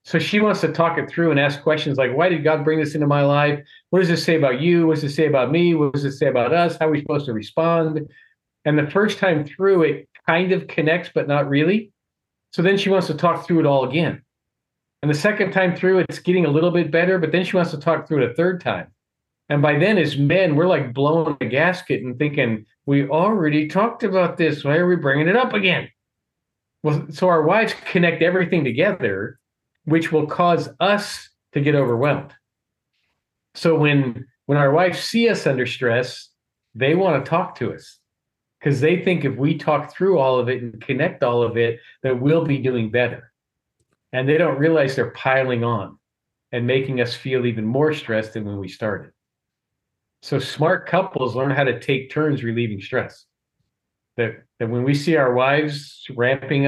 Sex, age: male, 40-59